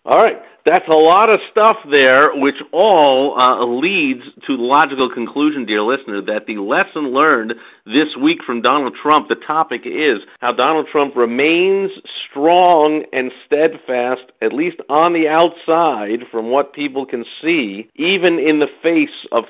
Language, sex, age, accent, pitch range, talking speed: English, male, 50-69, American, 120-160 Hz, 160 wpm